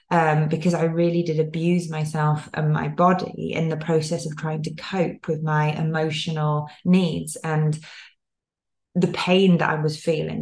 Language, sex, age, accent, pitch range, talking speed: English, female, 20-39, British, 160-190 Hz, 160 wpm